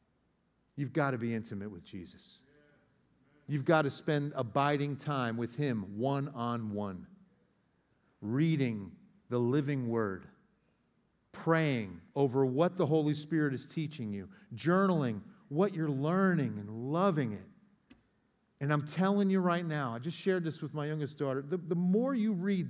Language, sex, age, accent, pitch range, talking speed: English, male, 50-69, American, 125-175 Hz, 145 wpm